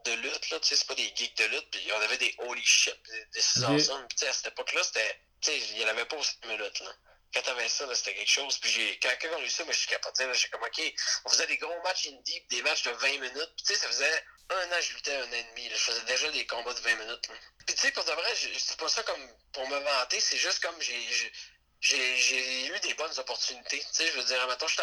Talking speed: 290 wpm